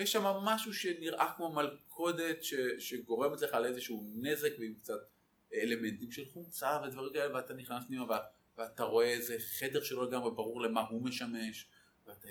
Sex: male